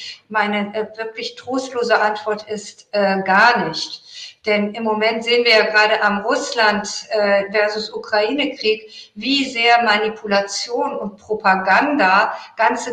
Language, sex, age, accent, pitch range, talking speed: German, female, 50-69, German, 210-240 Hz, 115 wpm